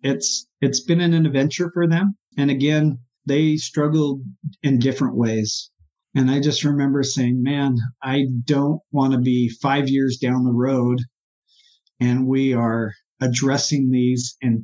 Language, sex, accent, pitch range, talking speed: English, male, American, 135-170 Hz, 150 wpm